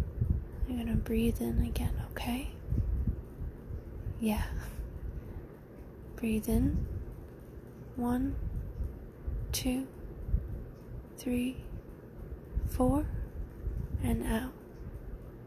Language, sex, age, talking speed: English, female, 20-39, 55 wpm